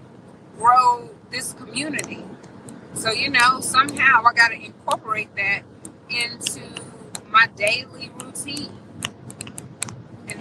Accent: American